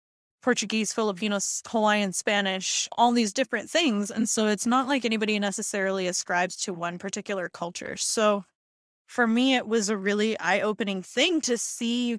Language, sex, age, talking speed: English, female, 20-39, 160 wpm